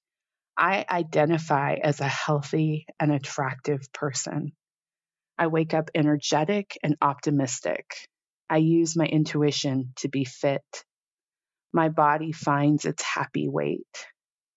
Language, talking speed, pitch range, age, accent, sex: English, 110 wpm, 140-160 Hz, 30-49, American, female